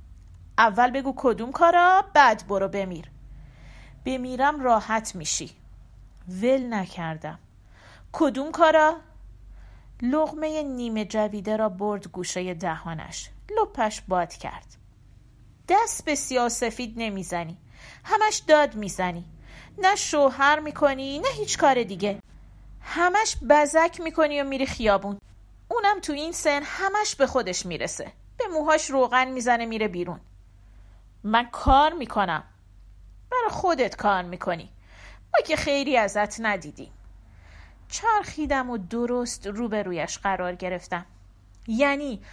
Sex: female